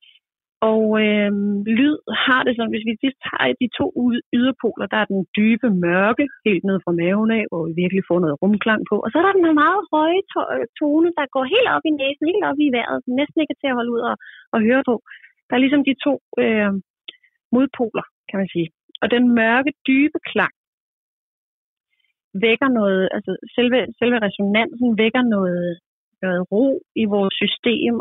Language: Danish